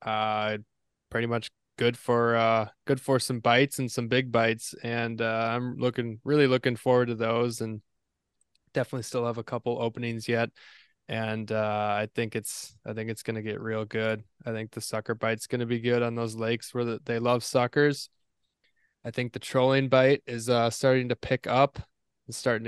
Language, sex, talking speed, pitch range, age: English, male, 195 wpm, 110-125 Hz, 20-39